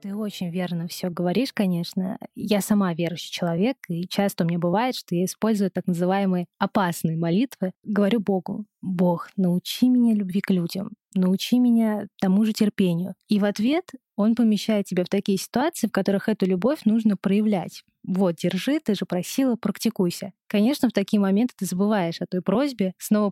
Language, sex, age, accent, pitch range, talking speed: Russian, female, 20-39, native, 185-225 Hz, 170 wpm